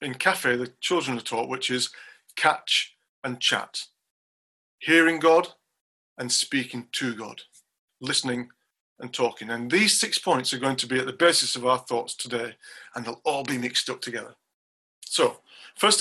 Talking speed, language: 165 wpm, English